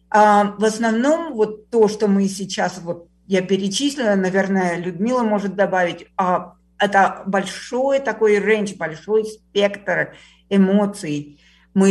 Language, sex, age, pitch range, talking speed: Russian, female, 50-69, 180-215 Hz, 110 wpm